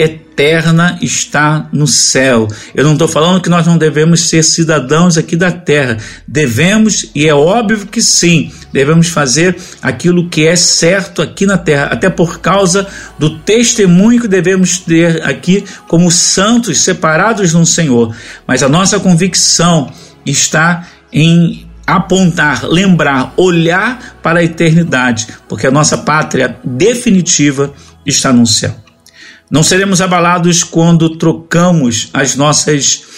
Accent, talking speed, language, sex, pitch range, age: Brazilian, 130 wpm, Portuguese, male, 140-190 Hz, 50-69